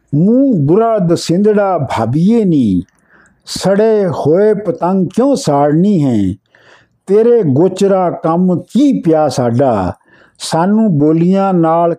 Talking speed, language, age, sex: 105 wpm, Punjabi, 50-69, male